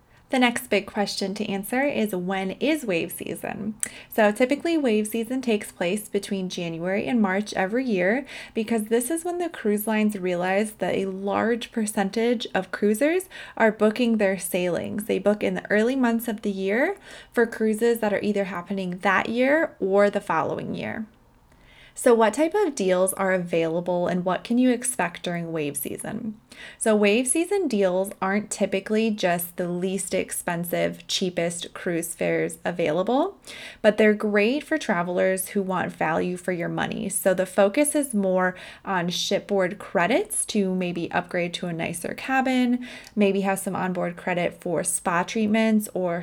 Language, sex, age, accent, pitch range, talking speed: English, female, 20-39, American, 185-230 Hz, 165 wpm